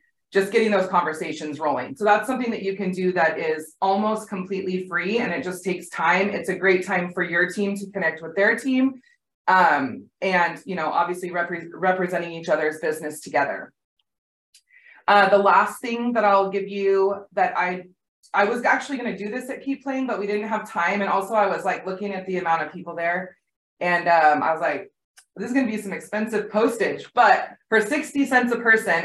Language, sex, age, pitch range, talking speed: English, female, 20-39, 180-215 Hz, 205 wpm